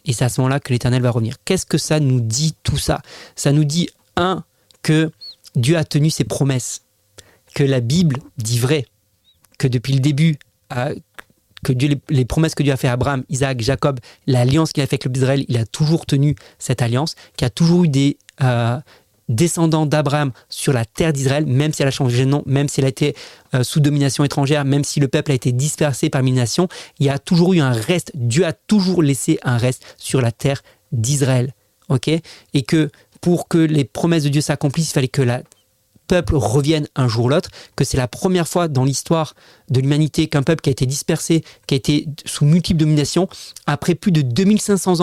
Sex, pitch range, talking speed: male, 130-160 Hz, 215 wpm